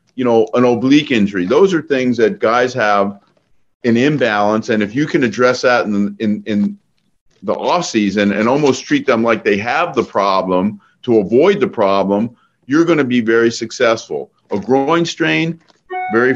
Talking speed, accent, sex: 170 wpm, American, male